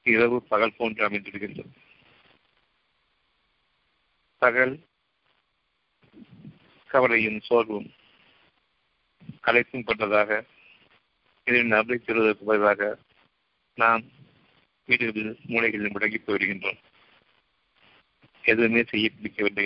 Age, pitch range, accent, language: 50-69, 105-120 Hz, native, Tamil